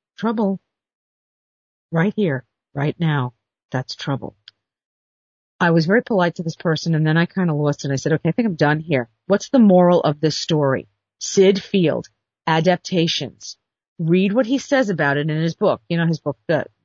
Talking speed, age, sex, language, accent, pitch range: 185 wpm, 50-69, female, English, American, 145-200 Hz